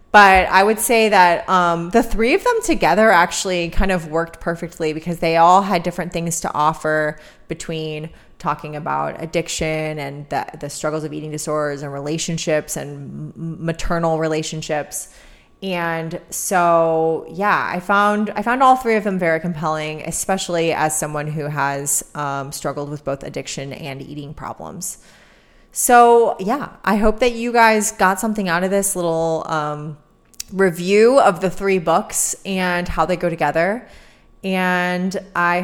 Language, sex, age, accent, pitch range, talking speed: English, female, 20-39, American, 150-195 Hz, 155 wpm